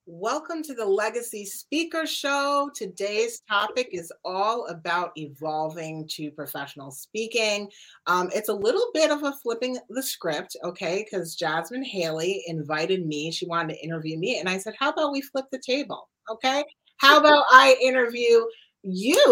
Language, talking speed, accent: English, 160 wpm, American